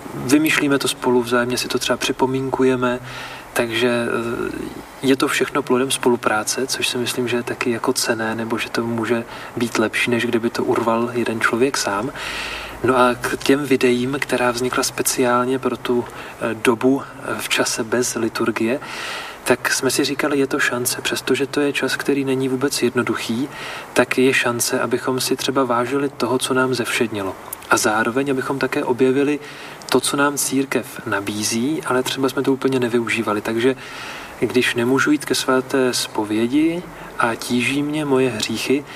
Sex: male